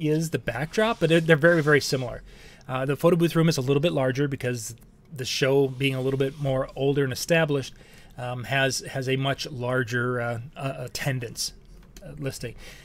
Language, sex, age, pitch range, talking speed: English, male, 30-49, 130-155 Hz, 180 wpm